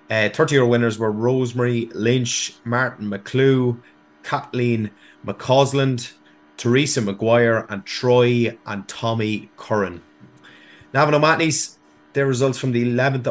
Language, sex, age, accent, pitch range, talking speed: English, male, 30-49, Irish, 105-125 Hz, 110 wpm